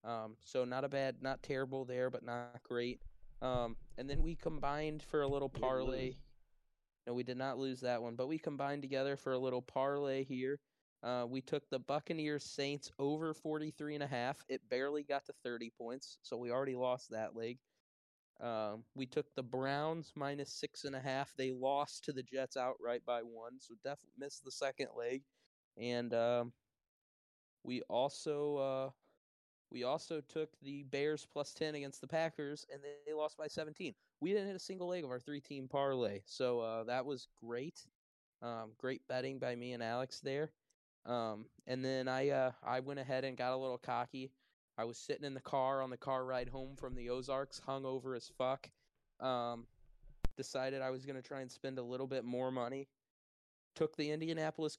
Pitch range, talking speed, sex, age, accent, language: 125-140 Hz, 190 wpm, male, 20-39, American, English